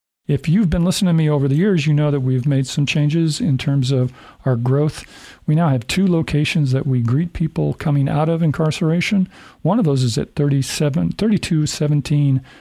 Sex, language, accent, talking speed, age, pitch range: male, English, American, 190 wpm, 50-69, 130-160 Hz